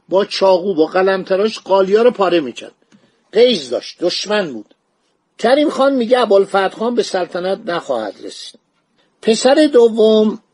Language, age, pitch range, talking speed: Persian, 50-69, 170-220 Hz, 130 wpm